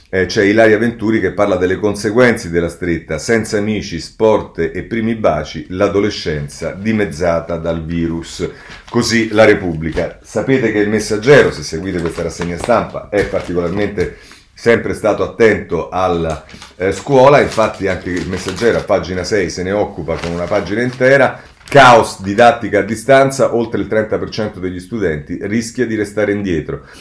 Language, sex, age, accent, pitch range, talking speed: Italian, male, 40-59, native, 85-105 Hz, 150 wpm